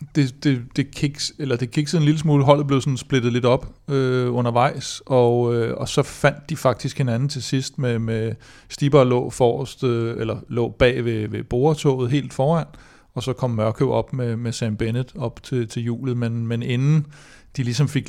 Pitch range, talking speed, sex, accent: 115-135 Hz, 185 wpm, male, native